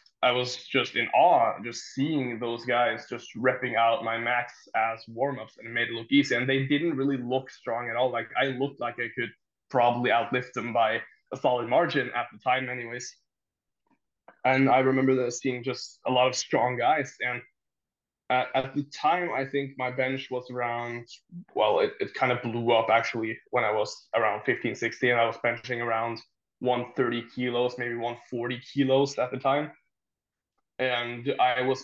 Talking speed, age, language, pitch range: 185 wpm, 20-39, English, 120-130 Hz